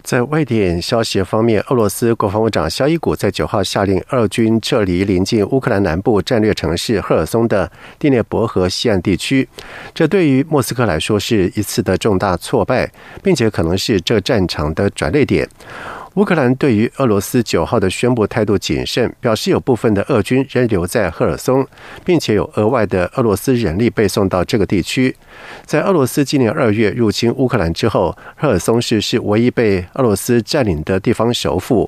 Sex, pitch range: male, 100-125 Hz